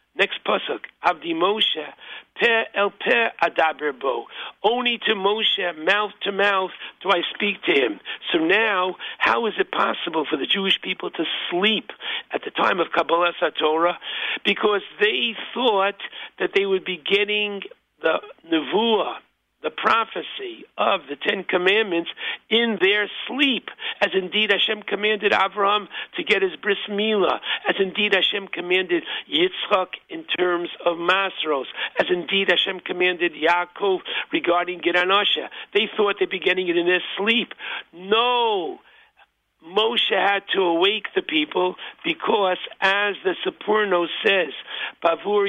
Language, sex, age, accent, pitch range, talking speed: English, male, 60-79, American, 185-260 Hz, 135 wpm